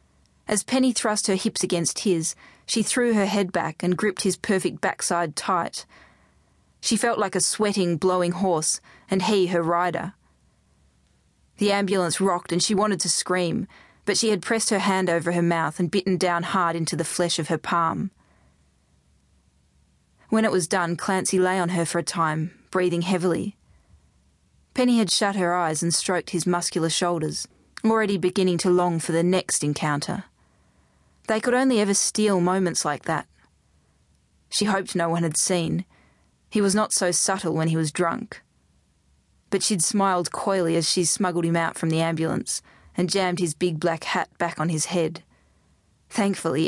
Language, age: English, 20-39